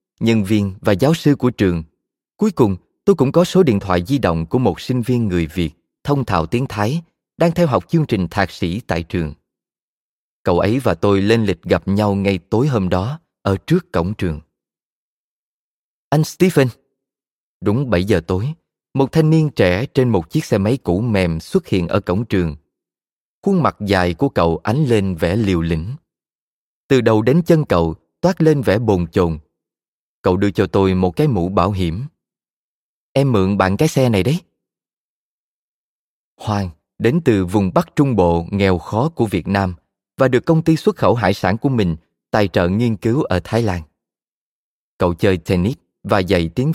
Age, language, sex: 20-39, Vietnamese, male